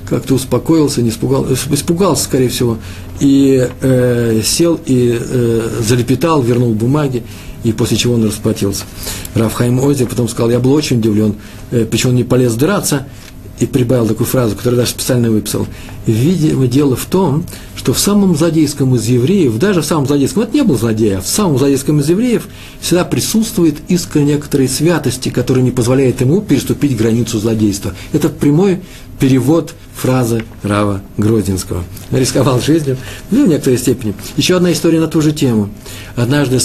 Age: 50-69